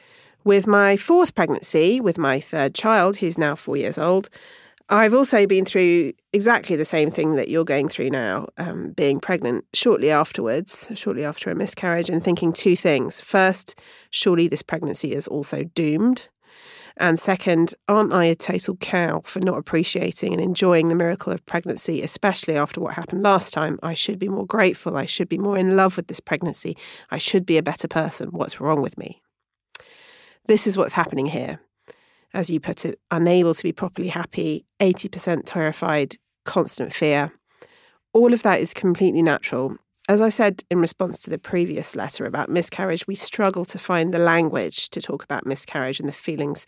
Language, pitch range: English, 165-200 Hz